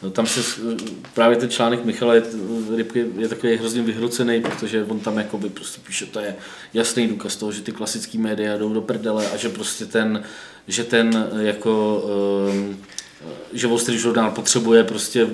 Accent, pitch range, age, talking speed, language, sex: native, 110-120 Hz, 20-39, 155 wpm, Czech, male